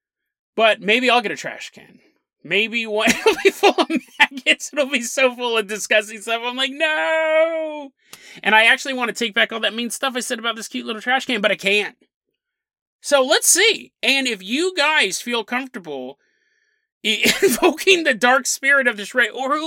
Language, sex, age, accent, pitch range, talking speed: English, male, 30-49, American, 205-295 Hz, 190 wpm